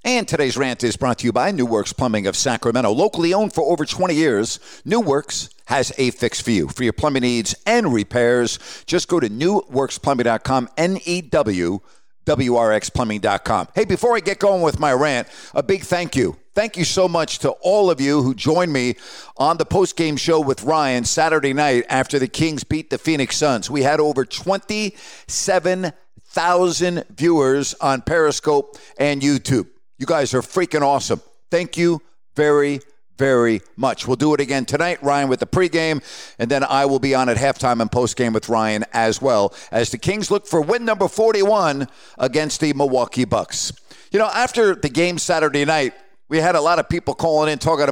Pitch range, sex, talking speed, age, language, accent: 130-180 Hz, male, 190 wpm, 50-69, English, American